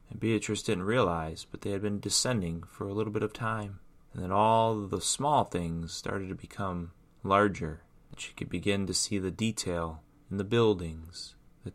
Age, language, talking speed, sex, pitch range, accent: 30-49, English, 195 wpm, male, 95-125 Hz, American